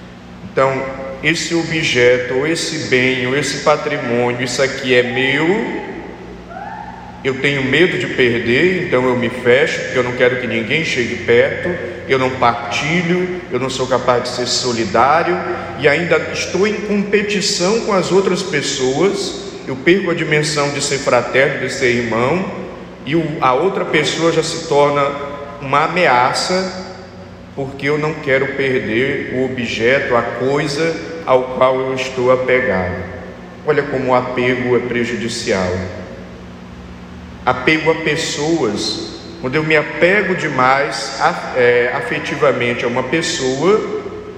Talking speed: 135 wpm